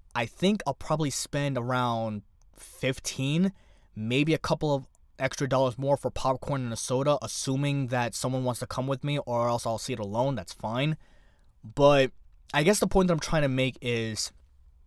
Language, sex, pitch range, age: English, male, 105-140 Hz, 20-39